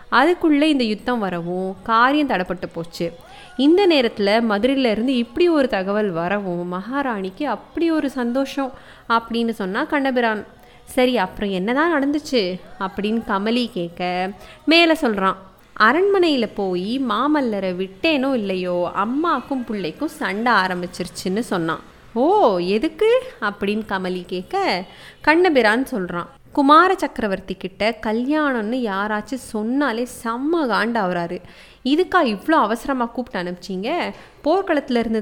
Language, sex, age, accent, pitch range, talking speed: Tamil, female, 20-39, native, 200-275 Hz, 105 wpm